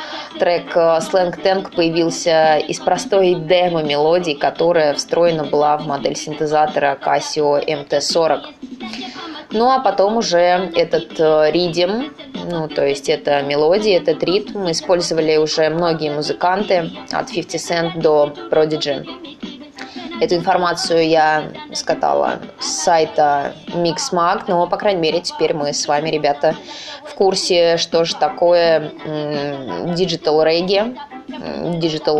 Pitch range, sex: 155-195 Hz, female